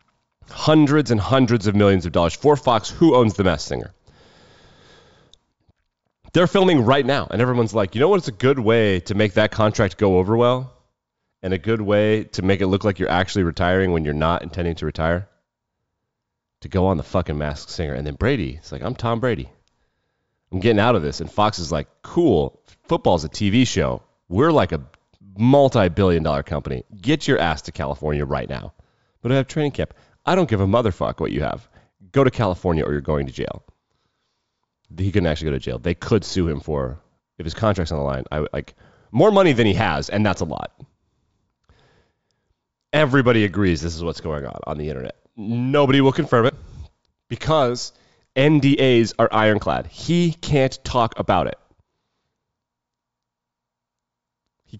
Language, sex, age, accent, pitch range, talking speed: English, male, 30-49, American, 85-125 Hz, 185 wpm